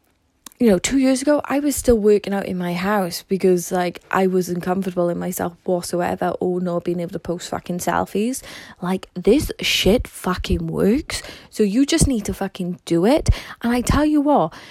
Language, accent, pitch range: English, British, 190-265 Hz